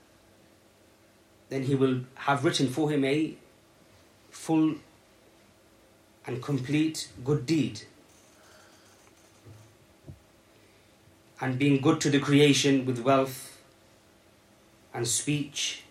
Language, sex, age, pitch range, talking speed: English, male, 30-49, 110-140 Hz, 85 wpm